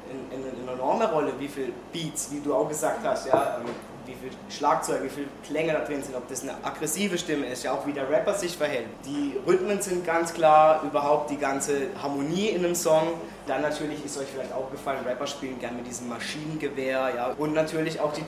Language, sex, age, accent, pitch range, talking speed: German, male, 20-39, German, 140-175 Hz, 225 wpm